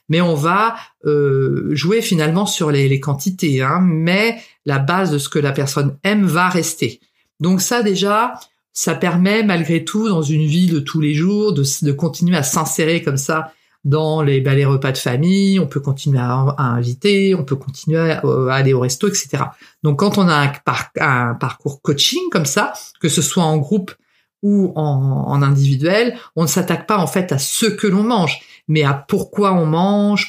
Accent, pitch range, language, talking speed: French, 140-180 Hz, French, 200 wpm